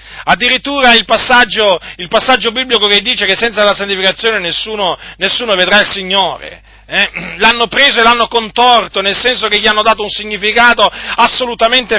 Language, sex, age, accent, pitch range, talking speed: Italian, male, 40-59, native, 190-250 Hz, 155 wpm